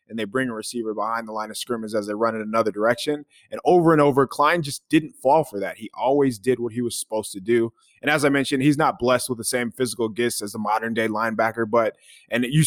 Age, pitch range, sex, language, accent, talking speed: 20-39, 115-145 Hz, male, English, American, 260 wpm